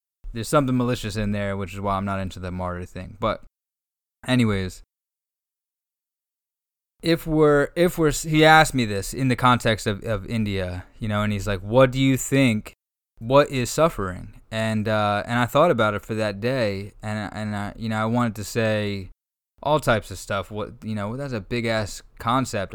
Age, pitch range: 20-39, 105-130 Hz